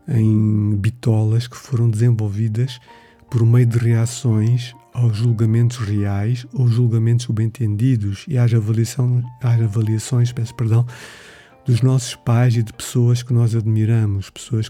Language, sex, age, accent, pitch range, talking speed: Portuguese, male, 50-69, Brazilian, 110-120 Hz, 130 wpm